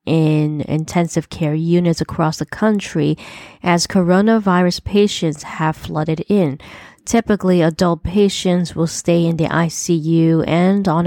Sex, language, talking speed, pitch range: female, English, 125 wpm, 160-190 Hz